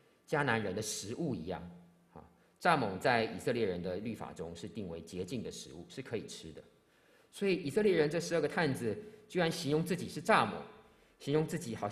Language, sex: Chinese, male